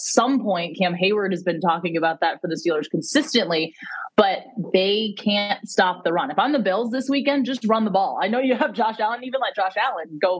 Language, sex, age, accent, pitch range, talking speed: English, female, 20-39, American, 165-195 Hz, 230 wpm